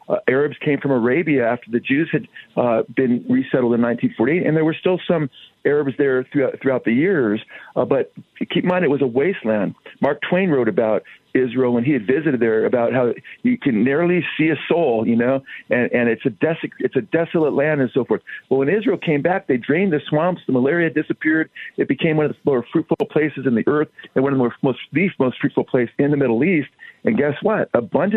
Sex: male